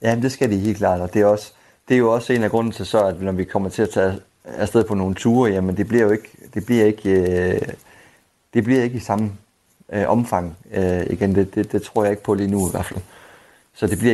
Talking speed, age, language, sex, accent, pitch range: 270 wpm, 30-49, Danish, male, native, 95-115 Hz